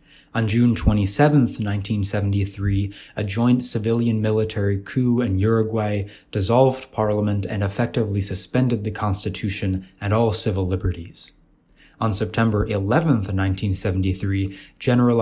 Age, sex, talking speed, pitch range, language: 20-39, male, 105 wpm, 100-120 Hz, English